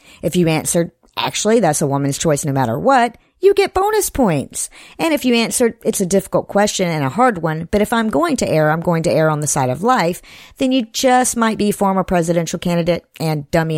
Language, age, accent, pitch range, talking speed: English, 50-69, American, 160-230 Hz, 225 wpm